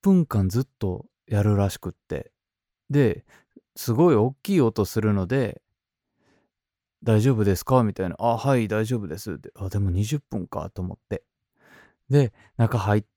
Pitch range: 105-130 Hz